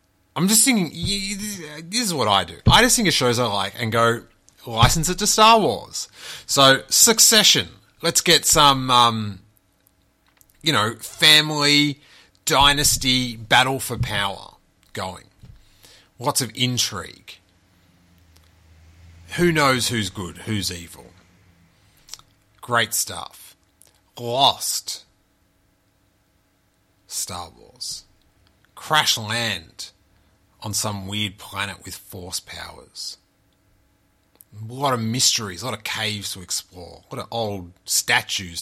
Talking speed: 115 wpm